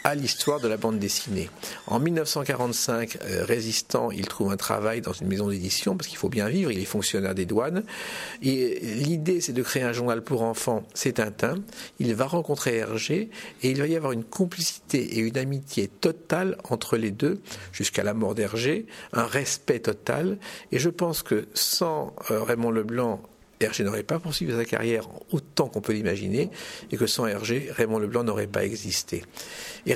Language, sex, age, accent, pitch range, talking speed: French, male, 50-69, French, 110-150 Hz, 185 wpm